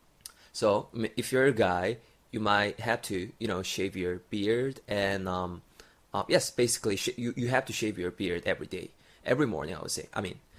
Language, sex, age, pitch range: Korean, male, 20-39, 100-150 Hz